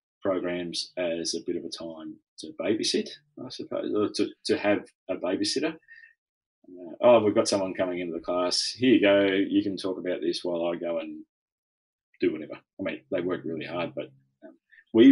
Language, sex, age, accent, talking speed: English, male, 30-49, Australian, 190 wpm